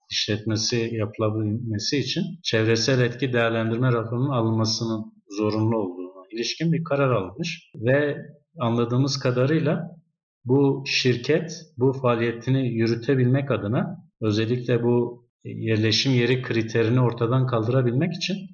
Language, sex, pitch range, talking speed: Turkish, male, 110-135 Hz, 100 wpm